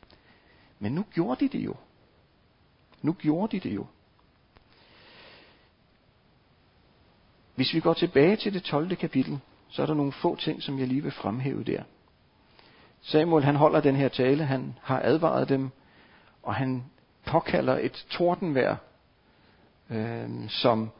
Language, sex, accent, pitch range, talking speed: Danish, male, native, 125-160 Hz, 135 wpm